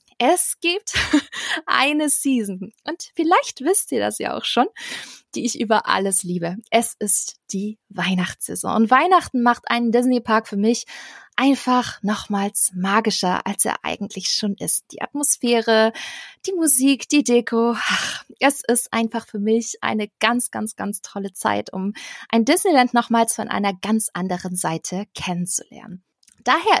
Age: 20-39